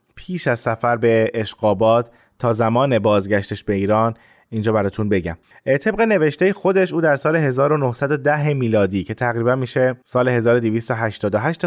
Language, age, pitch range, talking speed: Persian, 20-39, 115-145 Hz, 135 wpm